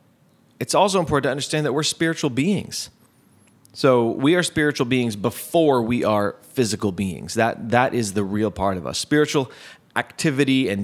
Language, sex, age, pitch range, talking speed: English, male, 30-49, 105-130 Hz, 165 wpm